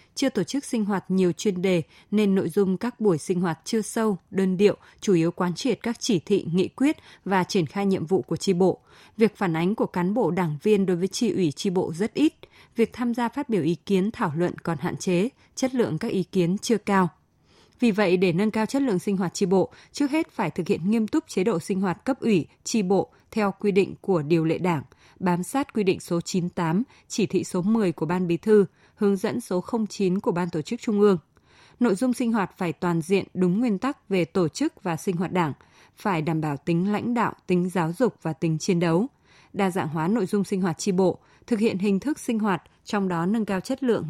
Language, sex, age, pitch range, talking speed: Vietnamese, female, 20-39, 180-220 Hz, 245 wpm